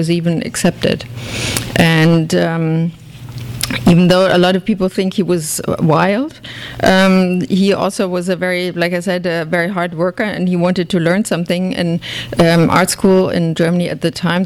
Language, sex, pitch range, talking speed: English, female, 160-185 Hz, 180 wpm